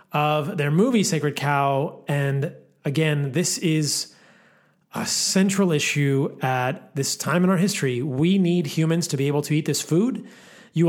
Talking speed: 160 wpm